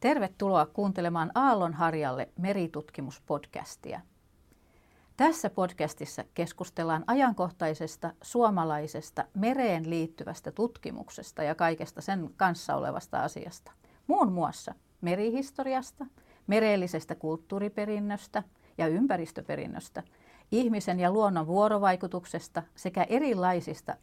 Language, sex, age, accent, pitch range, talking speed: Finnish, female, 40-59, native, 160-210 Hz, 75 wpm